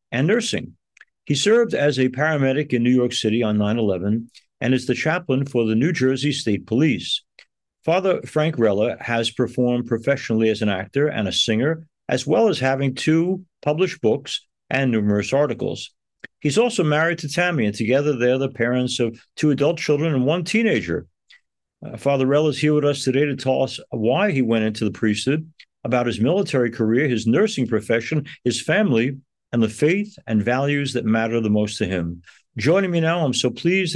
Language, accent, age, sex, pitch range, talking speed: English, American, 50-69, male, 115-150 Hz, 185 wpm